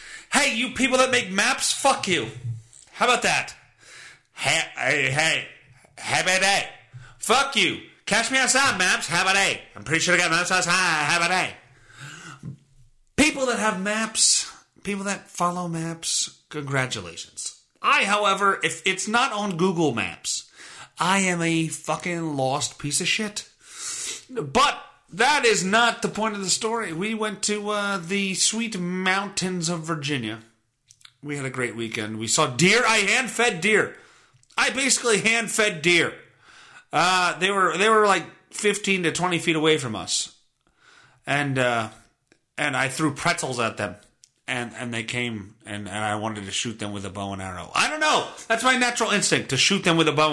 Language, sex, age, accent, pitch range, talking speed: English, male, 30-49, American, 130-210 Hz, 175 wpm